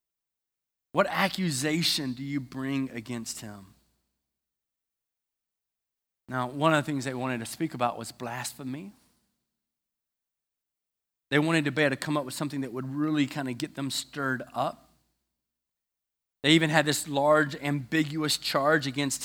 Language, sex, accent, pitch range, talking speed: English, male, American, 125-155 Hz, 145 wpm